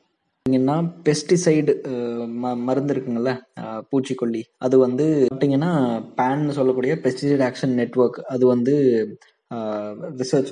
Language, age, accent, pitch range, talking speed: Tamil, 20-39, native, 120-145 Hz, 85 wpm